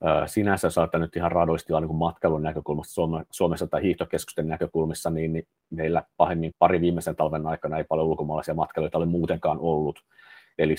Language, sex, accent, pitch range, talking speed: Finnish, male, native, 80-90 Hz, 150 wpm